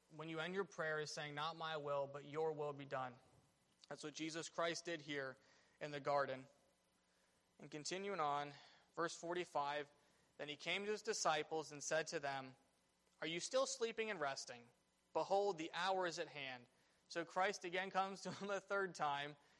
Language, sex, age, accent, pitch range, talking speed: English, male, 20-39, American, 150-175 Hz, 185 wpm